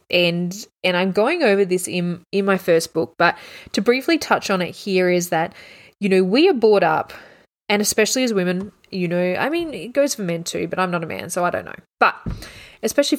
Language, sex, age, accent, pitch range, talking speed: English, female, 20-39, Australian, 175-230 Hz, 230 wpm